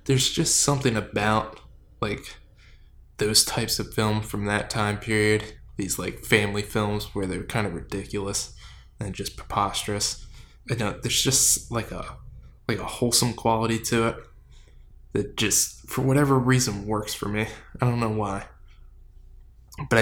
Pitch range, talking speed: 100-120 Hz, 150 wpm